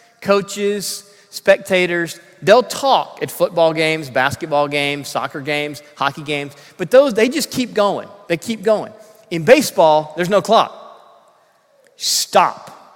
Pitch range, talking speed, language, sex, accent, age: 170-230 Hz, 130 wpm, English, male, American, 30-49